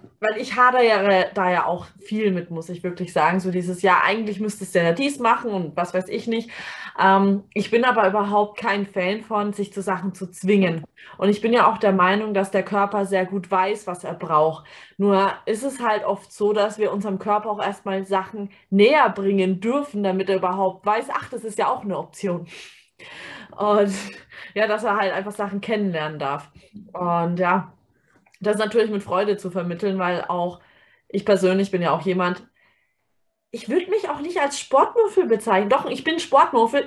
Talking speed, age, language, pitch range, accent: 195 wpm, 20-39, German, 185-240 Hz, German